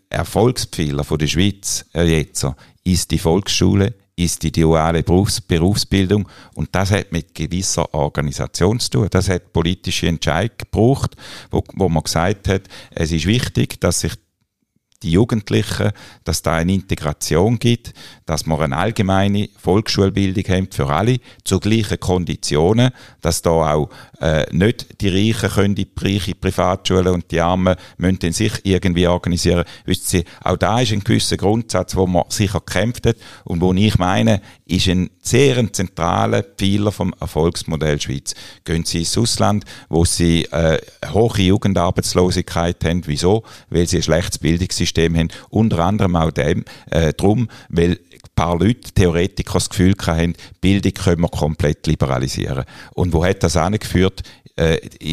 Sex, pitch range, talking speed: male, 85-105 Hz, 155 wpm